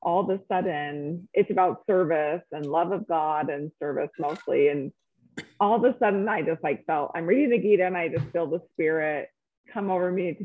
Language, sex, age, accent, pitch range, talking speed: English, female, 30-49, American, 150-200 Hz, 215 wpm